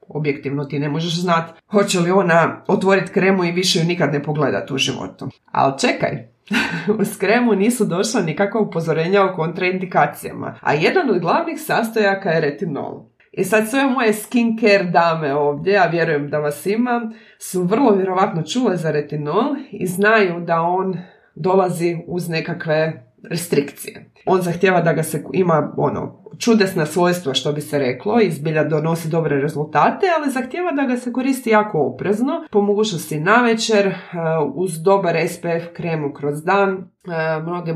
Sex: female